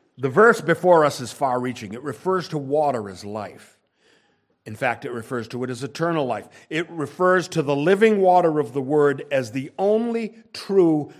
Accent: American